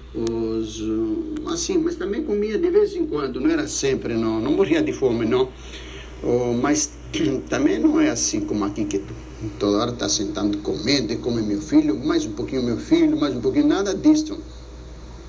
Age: 60-79